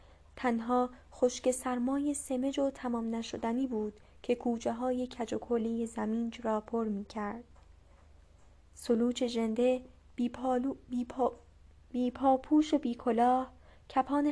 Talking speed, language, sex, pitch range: 100 wpm, Persian, female, 220-265 Hz